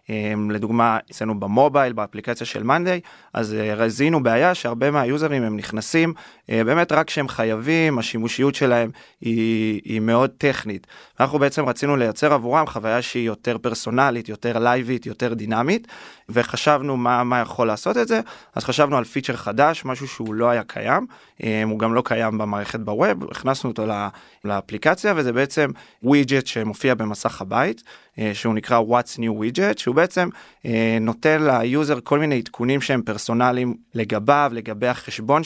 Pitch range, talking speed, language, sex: 115-140 Hz, 150 wpm, Hebrew, male